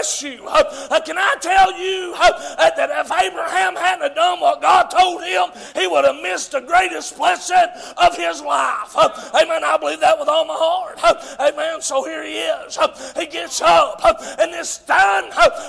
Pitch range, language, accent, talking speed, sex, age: 300-340 Hz, English, American, 165 wpm, male, 40-59